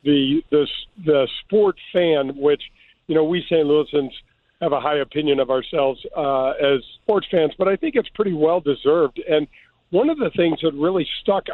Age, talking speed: 50-69, 185 wpm